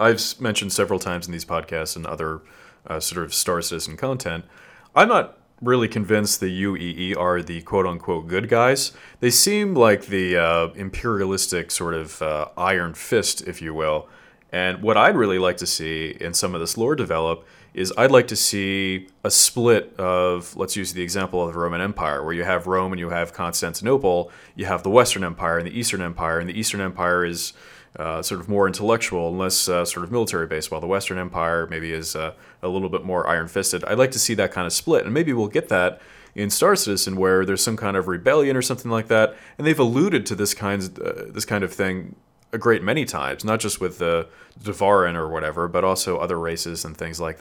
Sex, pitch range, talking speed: male, 85-100 Hz, 215 wpm